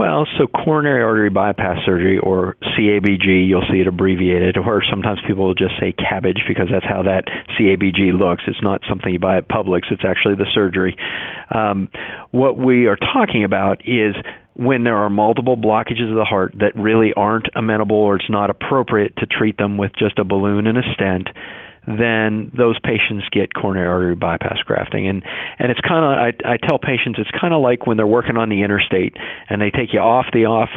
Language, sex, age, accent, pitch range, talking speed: English, male, 40-59, American, 95-115 Hz, 195 wpm